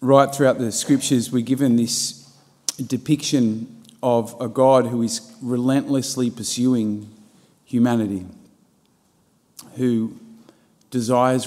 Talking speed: 95 wpm